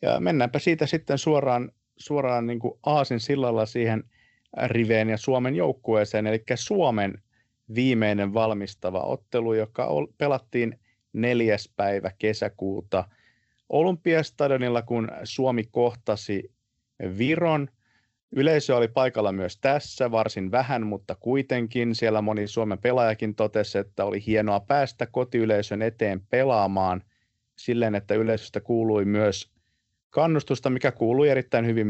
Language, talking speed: Finnish, 110 wpm